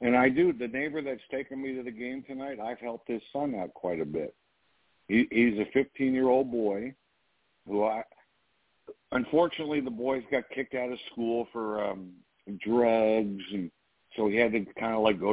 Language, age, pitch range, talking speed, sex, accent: English, 50-69, 100-125 Hz, 185 wpm, male, American